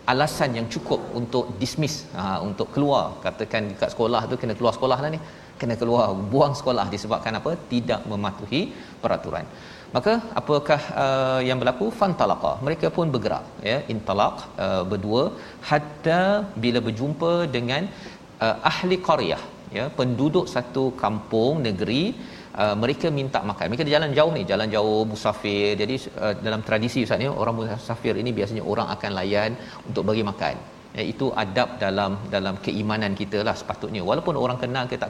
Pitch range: 110-145 Hz